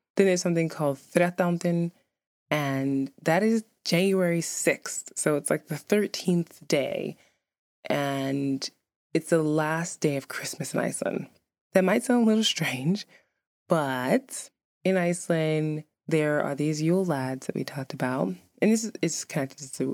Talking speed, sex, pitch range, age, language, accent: 145 wpm, female, 135-170 Hz, 20-39, English, American